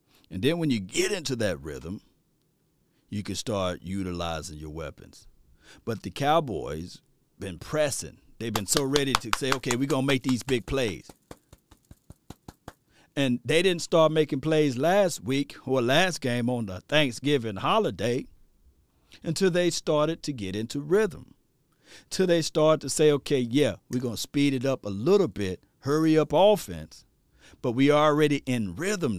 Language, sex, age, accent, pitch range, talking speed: English, male, 50-69, American, 110-145 Hz, 165 wpm